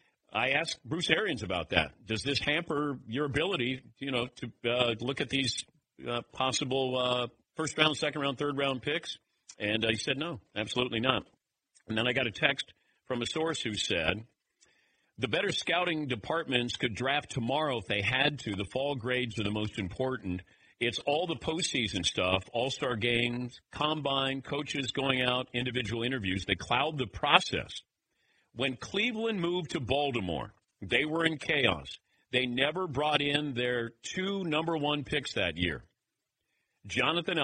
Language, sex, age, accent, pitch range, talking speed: English, male, 50-69, American, 120-150 Hz, 160 wpm